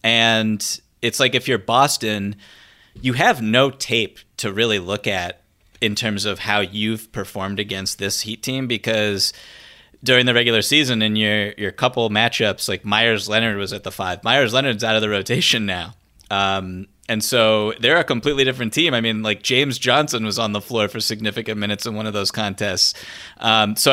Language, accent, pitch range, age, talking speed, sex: English, American, 100-115 Hz, 30-49, 190 wpm, male